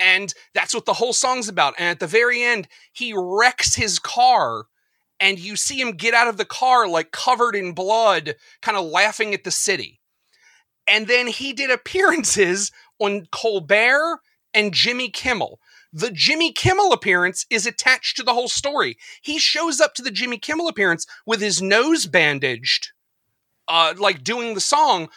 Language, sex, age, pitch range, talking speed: English, male, 40-59, 200-280 Hz, 170 wpm